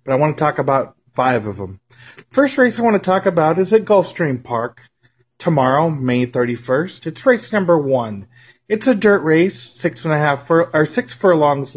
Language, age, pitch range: English, 40-59, 135-185 Hz